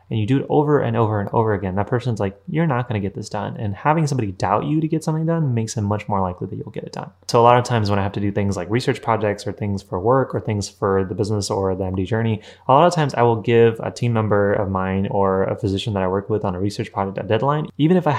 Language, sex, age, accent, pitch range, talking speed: English, male, 20-39, American, 100-125 Hz, 305 wpm